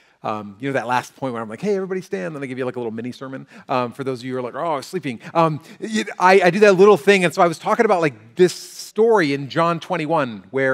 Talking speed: 300 wpm